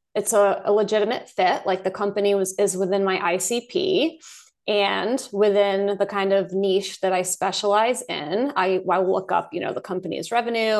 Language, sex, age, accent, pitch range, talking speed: English, female, 30-49, American, 185-210 Hz, 170 wpm